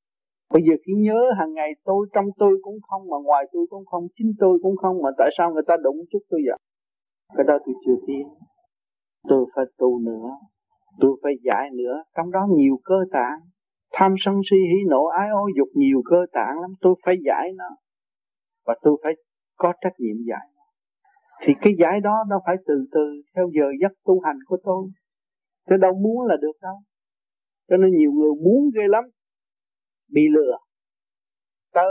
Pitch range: 145-195 Hz